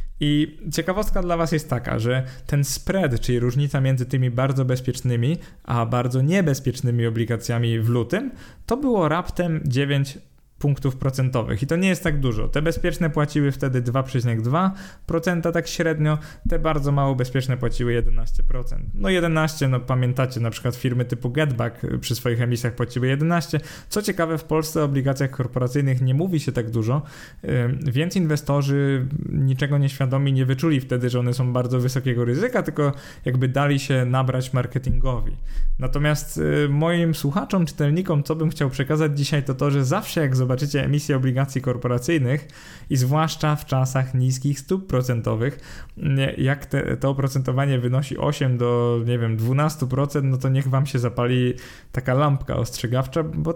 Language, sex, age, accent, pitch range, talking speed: Polish, male, 20-39, native, 125-155 Hz, 150 wpm